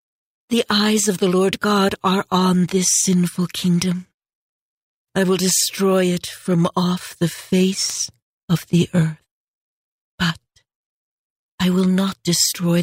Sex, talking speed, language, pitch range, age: female, 125 wpm, English, 170-190 Hz, 60-79